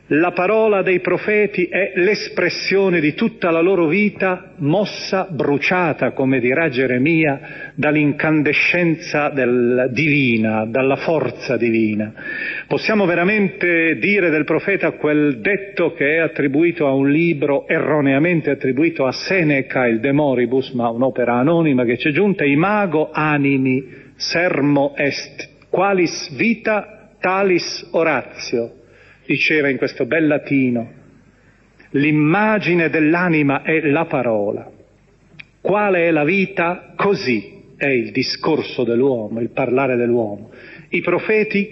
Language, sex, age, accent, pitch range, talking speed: Italian, male, 40-59, native, 135-185 Hz, 115 wpm